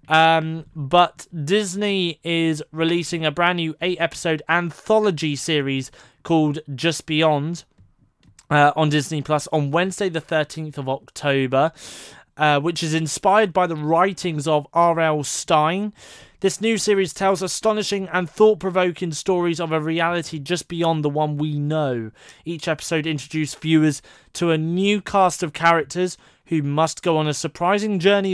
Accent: British